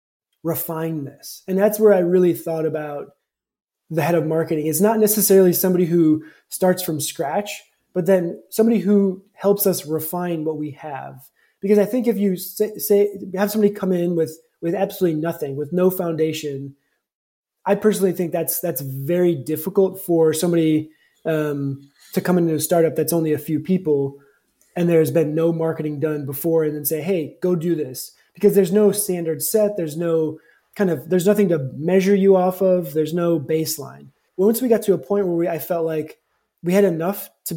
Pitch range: 155-190 Hz